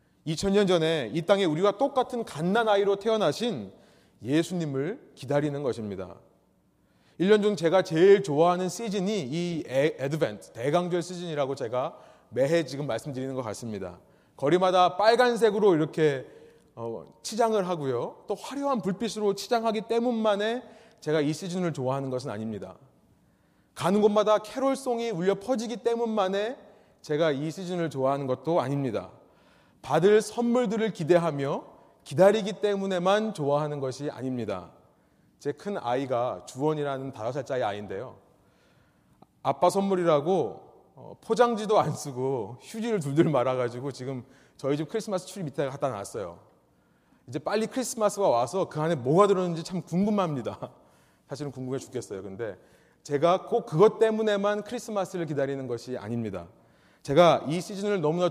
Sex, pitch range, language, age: male, 140-210 Hz, Korean, 30-49